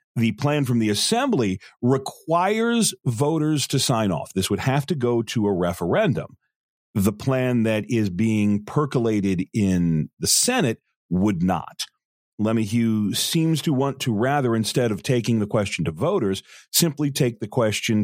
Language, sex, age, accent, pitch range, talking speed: English, male, 40-59, American, 100-145 Hz, 155 wpm